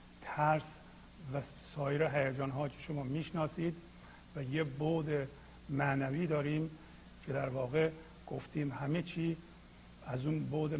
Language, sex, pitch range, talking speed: Persian, male, 135-155 Hz, 120 wpm